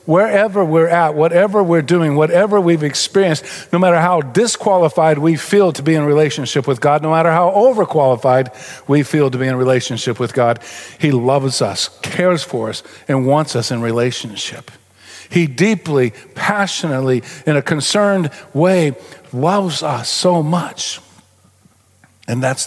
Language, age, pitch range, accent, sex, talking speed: English, 50-69, 125-170 Hz, American, male, 150 wpm